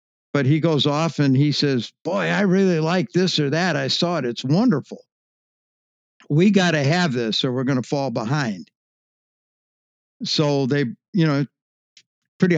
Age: 60-79